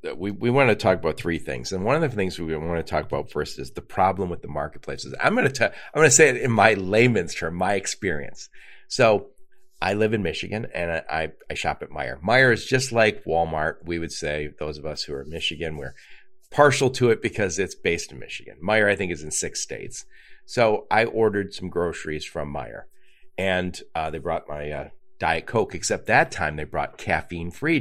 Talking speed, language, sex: 225 wpm, English, male